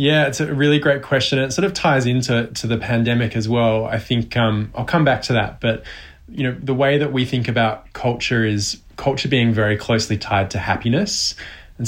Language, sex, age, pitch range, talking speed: English, male, 20-39, 105-120 Hz, 215 wpm